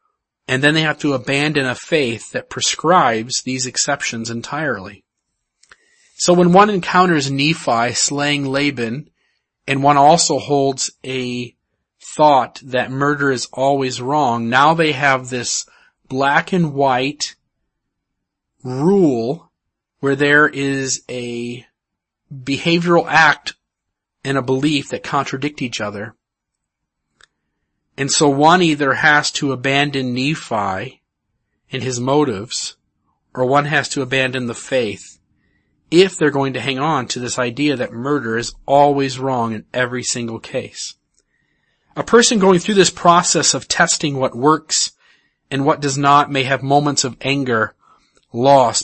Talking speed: 135 wpm